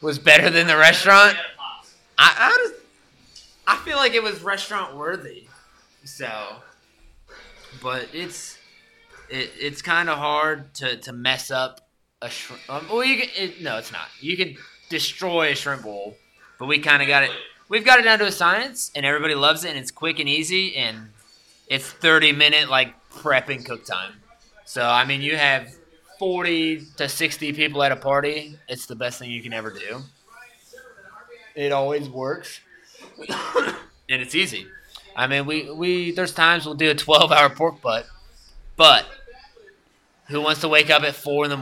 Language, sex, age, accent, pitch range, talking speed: English, male, 20-39, American, 130-170 Hz, 170 wpm